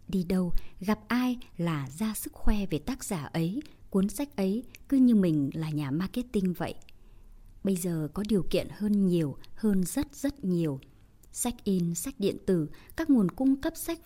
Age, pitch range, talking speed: 20-39, 170-240 Hz, 185 wpm